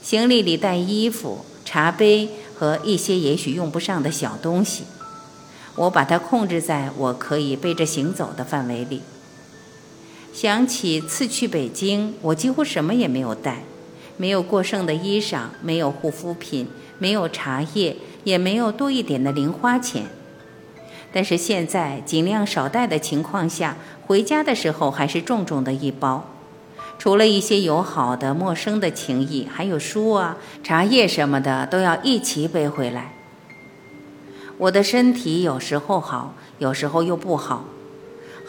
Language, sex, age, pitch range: Chinese, female, 50-69, 145-210 Hz